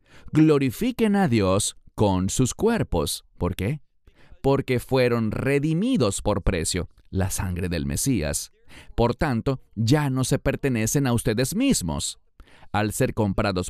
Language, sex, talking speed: English, male, 125 wpm